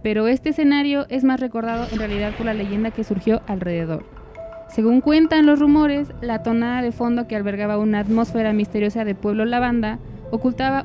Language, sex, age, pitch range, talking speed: Spanish, female, 20-39, 210-245 Hz, 170 wpm